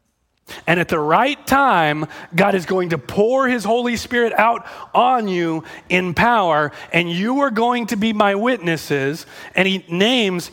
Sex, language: male, English